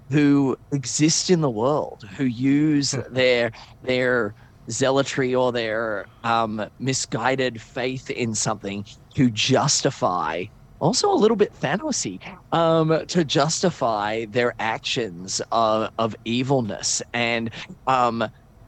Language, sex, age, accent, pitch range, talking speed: English, male, 30-49, American, 110-135 Hz, 110 wpm